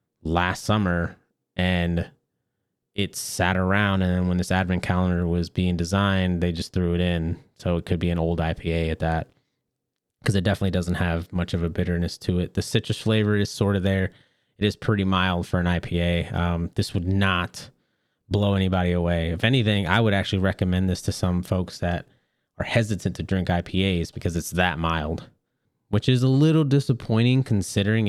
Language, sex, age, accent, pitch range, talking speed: English, male, 20-39, American, 90-105 Hz, 185 wpm